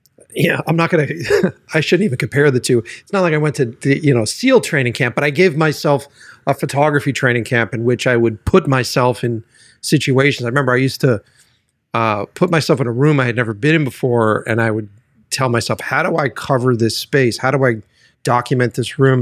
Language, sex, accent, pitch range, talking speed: English, male, American, 115-140 Hz, 225 wpm